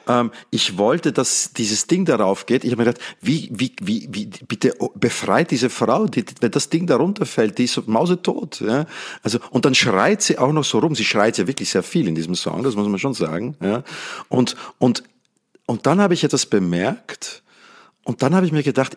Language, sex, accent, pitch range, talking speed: German, male, Austrian, 115-155 Hz, 210 wpm